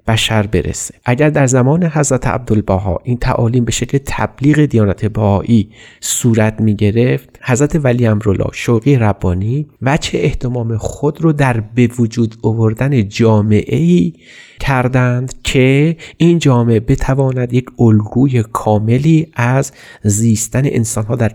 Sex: male